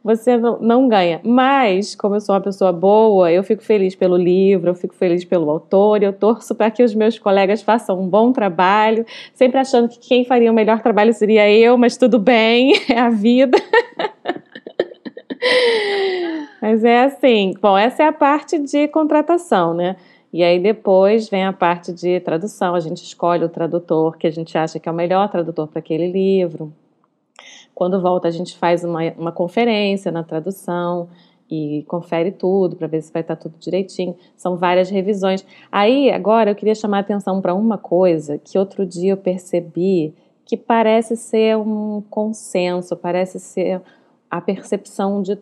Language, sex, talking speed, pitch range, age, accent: Portuguese, female, 175 wpm, 175-230 Hz, 20-39, Brazilian